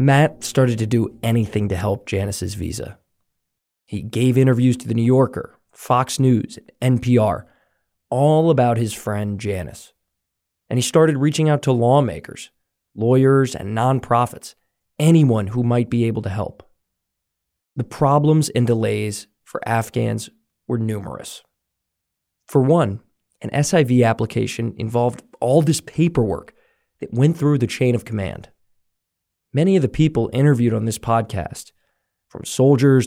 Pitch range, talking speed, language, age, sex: 105-140 Hz, 135 wpm, English, 20-39, male